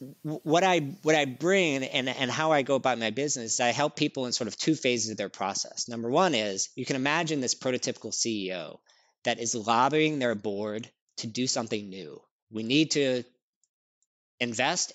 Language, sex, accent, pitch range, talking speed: English, male, American, 120-155 Hz, 185 wpm